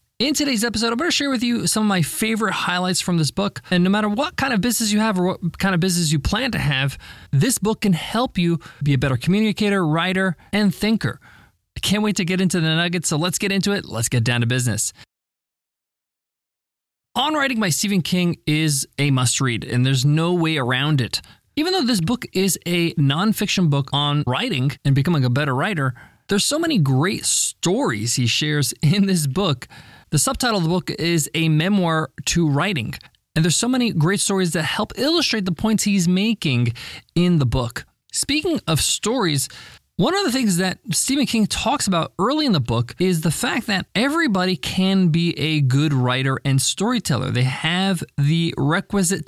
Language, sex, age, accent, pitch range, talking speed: English, male, 20-39, American, 145-210 Hz, 195 wpm